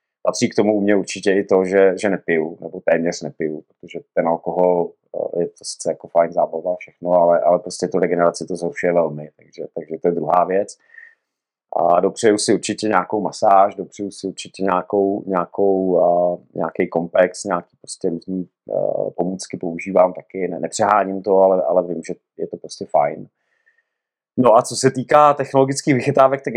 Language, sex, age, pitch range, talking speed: Czech, male, 30-49, 95-125 Hz, 175 wpm